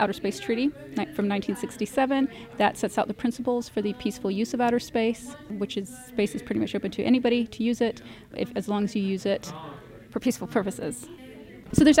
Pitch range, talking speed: 205-245 Hz, 205 wpm